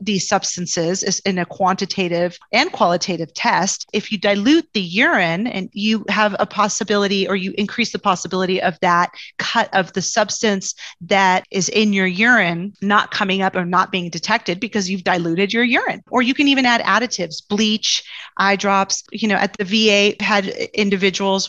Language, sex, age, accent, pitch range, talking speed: English, female, 40-59, American, 190-245 Hz, 175 wpm